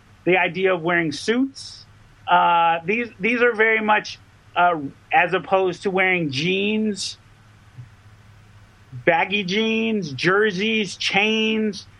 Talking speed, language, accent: 105 wpm, English, American